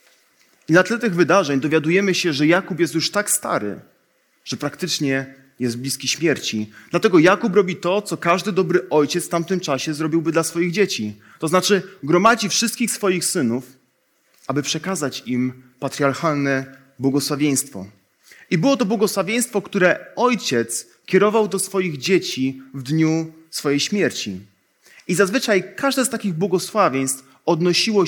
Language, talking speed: Polish, 140 wpm